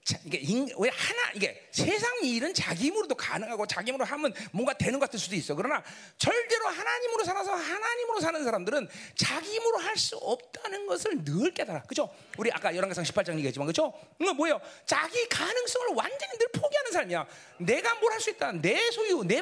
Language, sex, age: Korean, male, 40-59